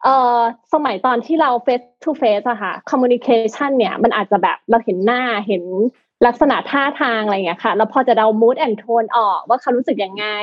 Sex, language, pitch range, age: female, Thai, 230-295 Hz, 20-39